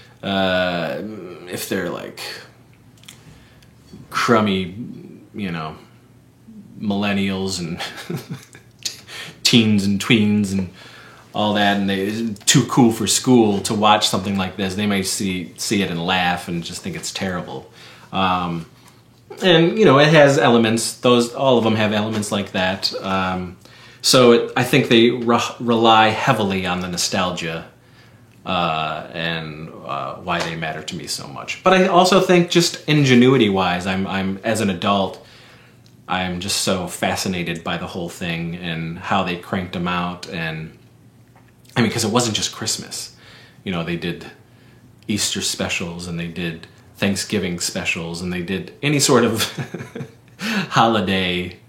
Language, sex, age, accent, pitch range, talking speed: English, male, 30-49, American, 90-120 Hz, 145 wpm